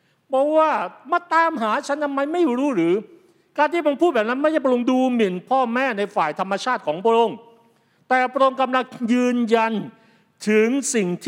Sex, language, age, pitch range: male, Thai, 60-79, 195-260 Hz